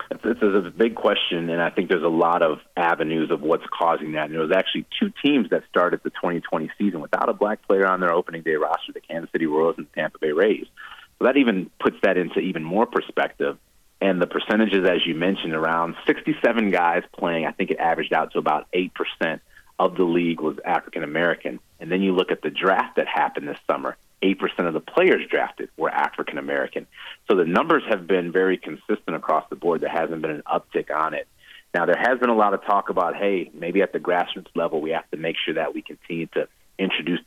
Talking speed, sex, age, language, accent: 225 wpm, male, 30-49, English, American